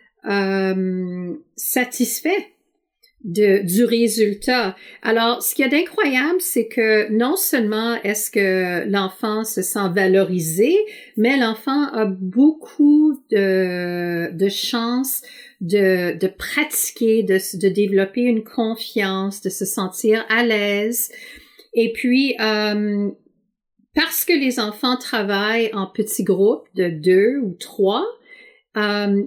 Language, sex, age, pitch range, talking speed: French, female, 50-69, 200-260 Hz, 115 wpm